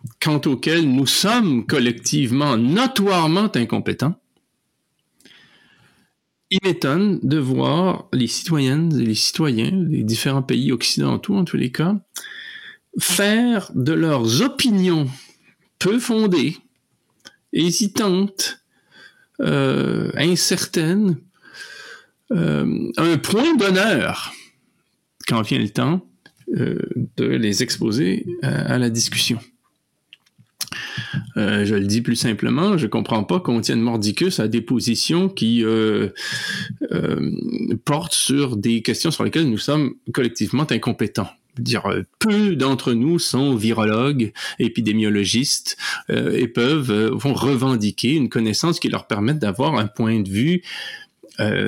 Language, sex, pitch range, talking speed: French, male, 115-185 Hz, 115 wpm